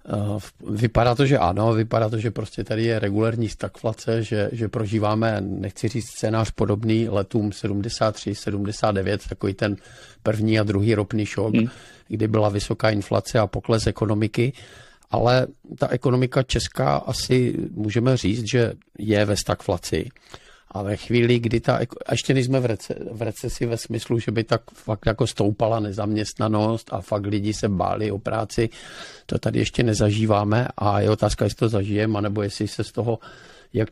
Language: Czech